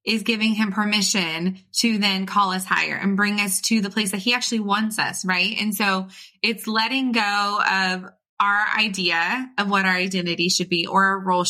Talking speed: 200 wpm